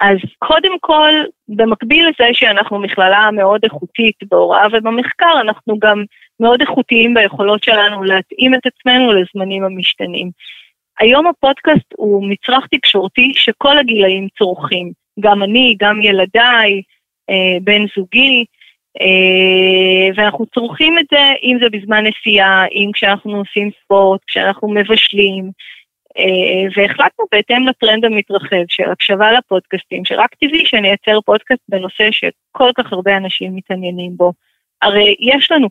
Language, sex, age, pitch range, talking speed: Hebrew, female, 20-39, 190-235 Hz, 125 wpm